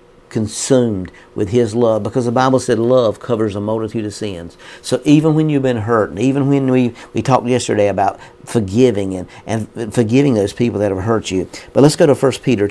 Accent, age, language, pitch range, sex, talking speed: American, 50-69, English, 100-125 Hz, male, 210 wpm